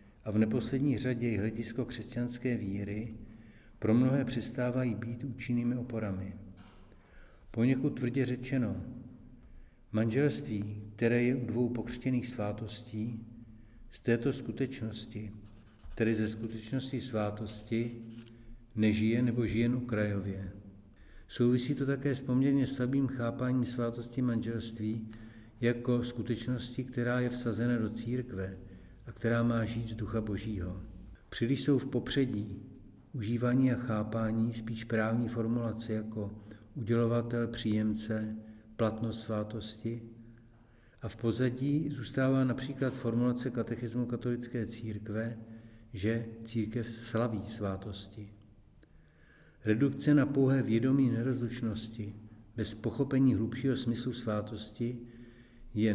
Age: 60-79